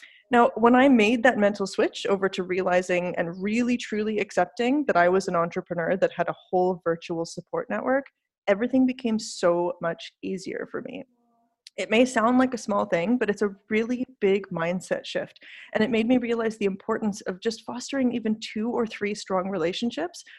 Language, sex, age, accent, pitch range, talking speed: English, female, 30-49, American, 190-245 Hz, 185 wpm